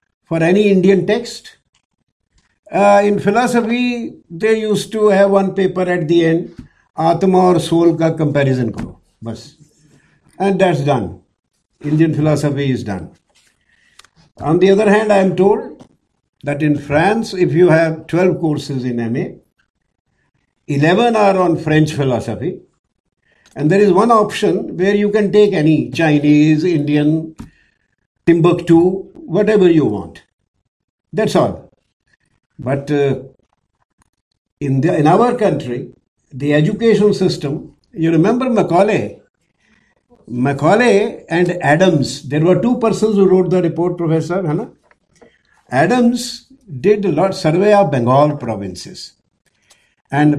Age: 60-79